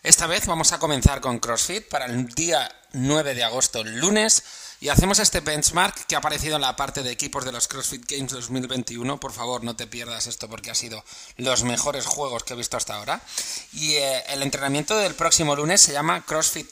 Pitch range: 130-170 Hz